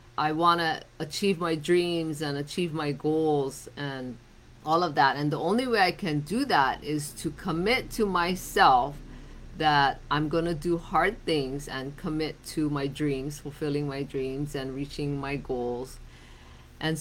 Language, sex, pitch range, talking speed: English, female, 140-175 Hz, 165 wpm